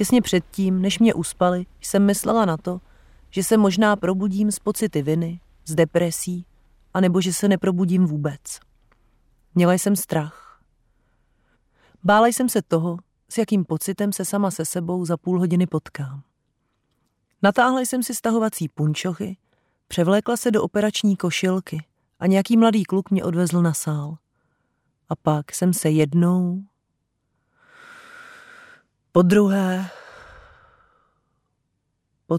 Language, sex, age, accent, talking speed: Czech, female, 30-49, native, 125 wpm